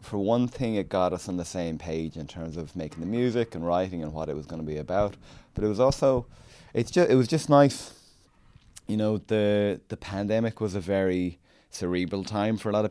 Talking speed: 230 wpm